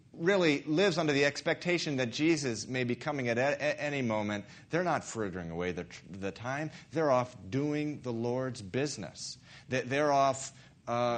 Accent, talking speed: American, 175 wpm